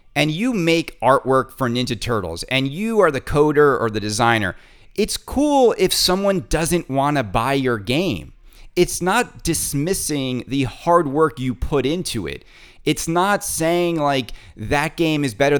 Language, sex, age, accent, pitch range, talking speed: English, male, 30-49, American, 130-185 Hz, 160 wpm